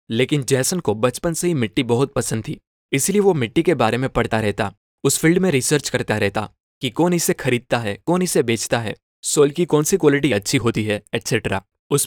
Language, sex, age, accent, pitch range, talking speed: Hindi, male, 20-39, native, 115-155 Hz, 215 wpm